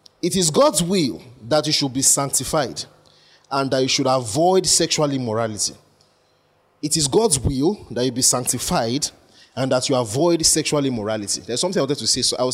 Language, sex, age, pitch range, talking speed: English, male, 30-49, 125-170 Hz, 185 wpm